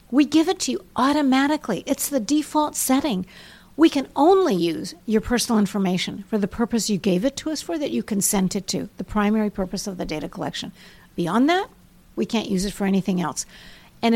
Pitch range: 210-285 Hz